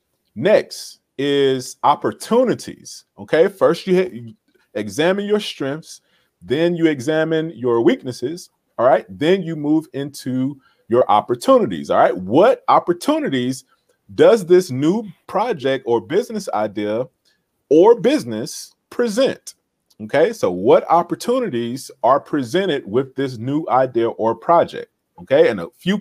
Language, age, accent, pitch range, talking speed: English, 40-59, American, 130-190 Hz, 125 wpm